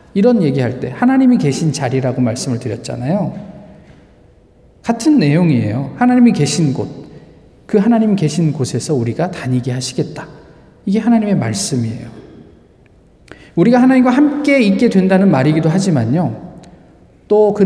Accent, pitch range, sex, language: native, 130-195 Hz, male, Korean